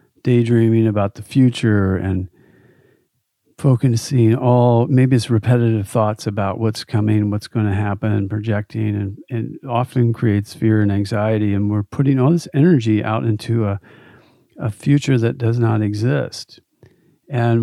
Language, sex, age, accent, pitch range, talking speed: English, male, 50-69, American, 105-125 Hz, 145 wpm